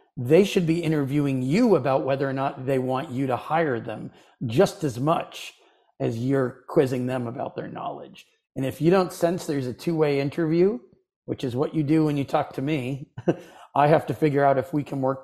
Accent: American